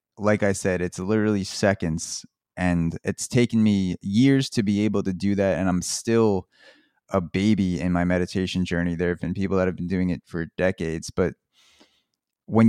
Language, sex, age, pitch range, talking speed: English, male, 20-39, 90-110 Hz, 185 wpm